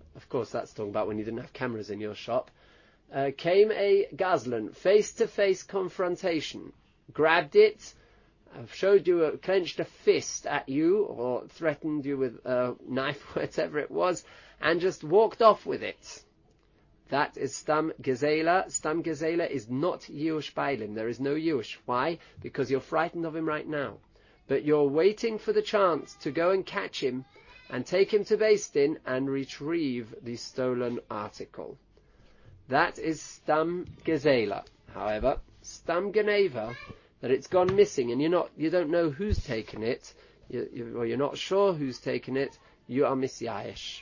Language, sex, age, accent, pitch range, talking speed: English, male, 30-49, British, 130-190 Hz, 160 wpm